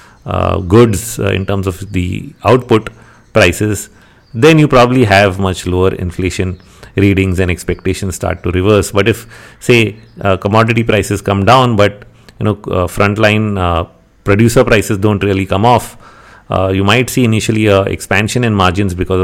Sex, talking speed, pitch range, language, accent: male, 160 wpm, 95-110 Hz, English, Indian